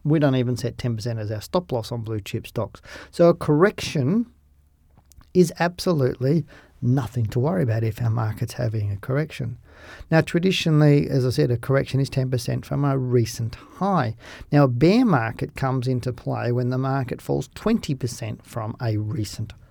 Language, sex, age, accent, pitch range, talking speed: English, male, 40-59, Australian, 120-145 Hz, 170 wpm